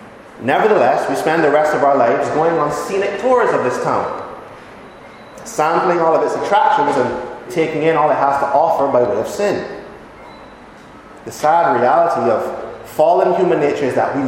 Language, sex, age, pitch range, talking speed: English, male, 30-49, 140-225 Hz, 175 wpm